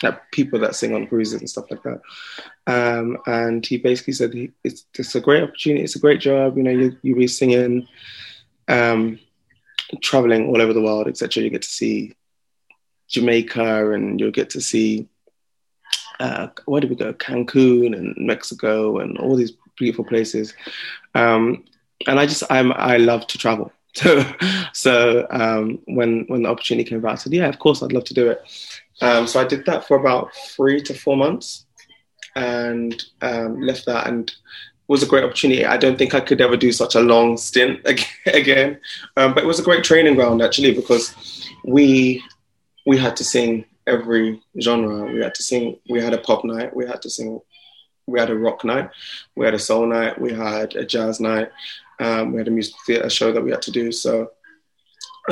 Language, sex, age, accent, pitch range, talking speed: English, male, 20-39, British, 115-130 Hz, 195 wpm